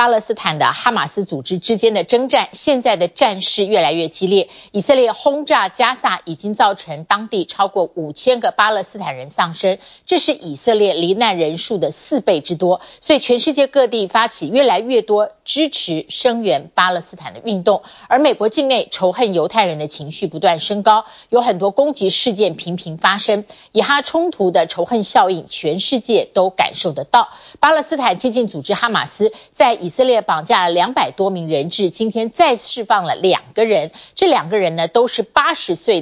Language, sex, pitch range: Chinese, female, 180-245 Hz